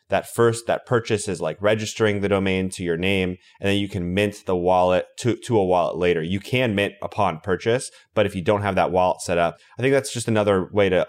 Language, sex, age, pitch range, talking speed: English, male, 20-39, 90-110 Hz, 245 wpm